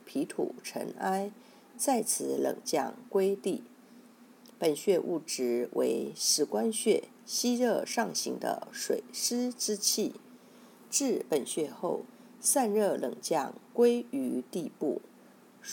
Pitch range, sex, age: 210-250 Hz, female, 50-69